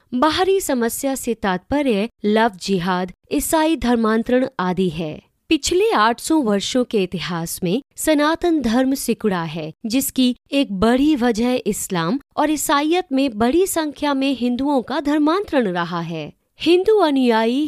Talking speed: 130 wpm